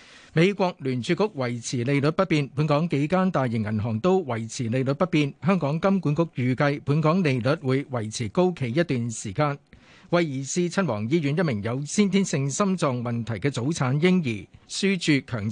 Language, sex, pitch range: Chinese, male, 130-180 Hz